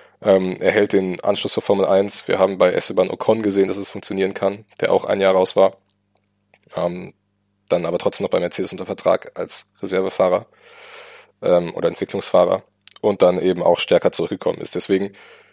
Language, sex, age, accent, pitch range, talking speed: German, male, 20-39, German, 100-115 Hz, 165 wpm